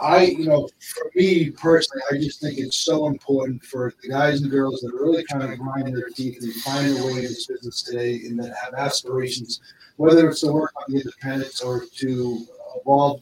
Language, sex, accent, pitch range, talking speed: English, male, American, 115-140 Hz, 215 wpm